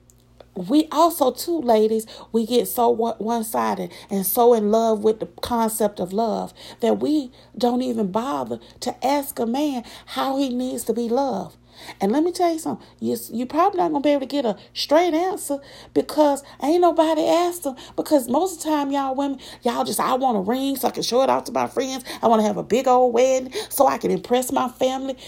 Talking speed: 220 wpm